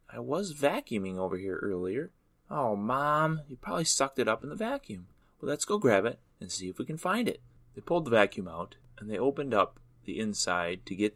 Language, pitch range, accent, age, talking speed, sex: English, 100-125 Hz, American, 30-49, 220 wpm, male